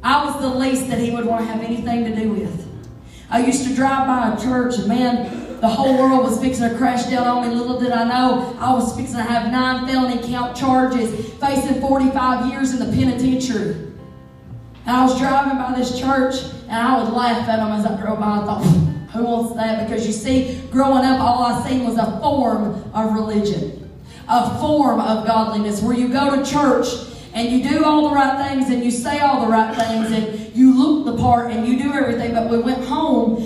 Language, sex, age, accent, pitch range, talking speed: English, female, 30-49, American, 230-270 Hz, 220 wpm